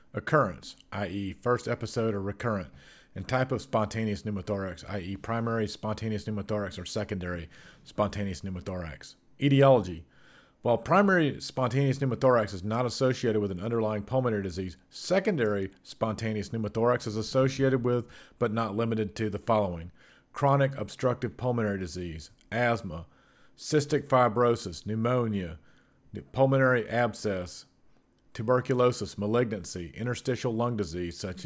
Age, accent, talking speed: 40-59, American, 115 wpm